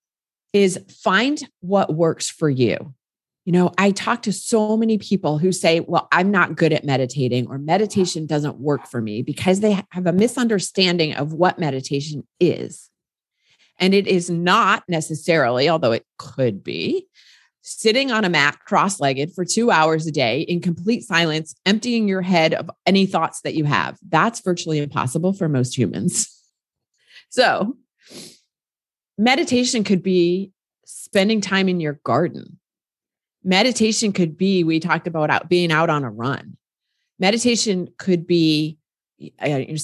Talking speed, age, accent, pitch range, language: 150 wpm, 30-49, American, 155-210 Hz, English